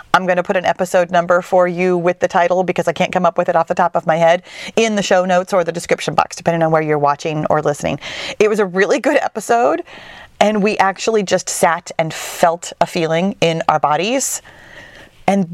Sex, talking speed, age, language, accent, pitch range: female, 225 wpm, 40-59, English, American, 170-210 Hz